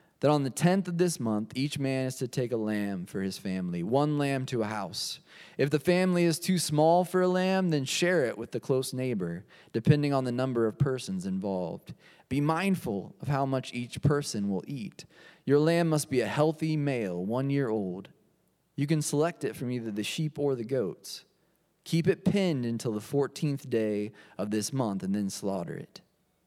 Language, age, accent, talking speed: English, 20-39, American, 200 wpm